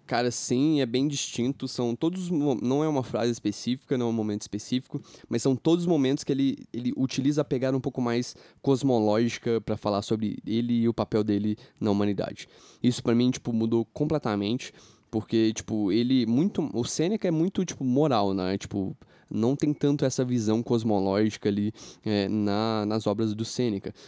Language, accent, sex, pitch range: Portuguese, Brazilian, male, 105-135 Hz